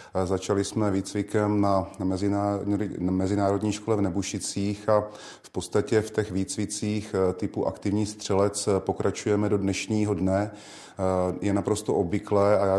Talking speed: 120 wpm